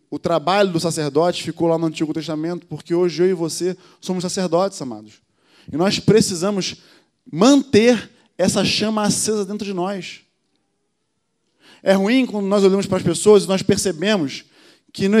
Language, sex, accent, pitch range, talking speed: Portuguese, male, Brazilian, 175-225 Hz, 160 wpm